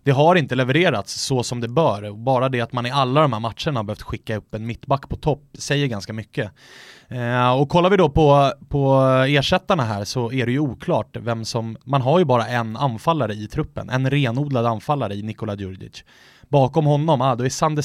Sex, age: male, 20-39